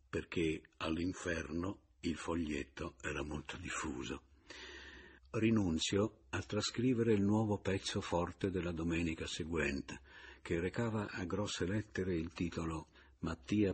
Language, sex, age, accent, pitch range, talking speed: Italian, male, 60-79, native, 75-100 Hz, 110 wpm